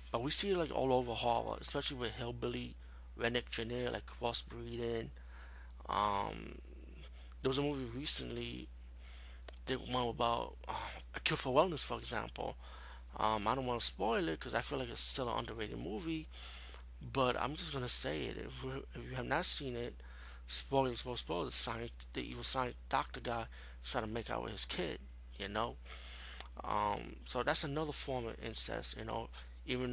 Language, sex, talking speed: English, male, 180 wpm